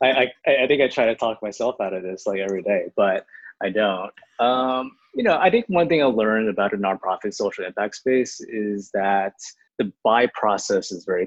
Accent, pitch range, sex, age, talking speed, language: American, 95-130 Hz, male, 20-39, 215 wpm, English